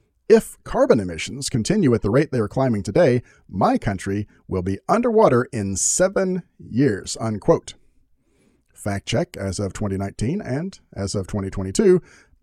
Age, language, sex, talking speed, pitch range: 40-59, English, male, 140 wpm, 105-150 Hz